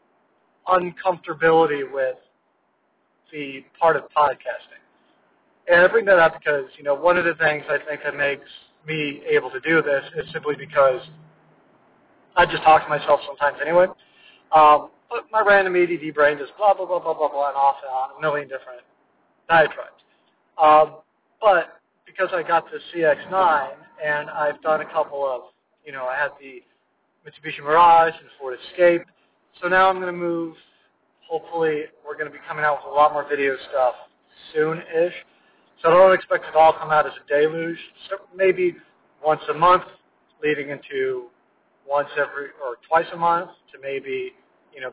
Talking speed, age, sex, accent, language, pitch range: 175 wpm, 40-59, male, American, English, 150-190 Hz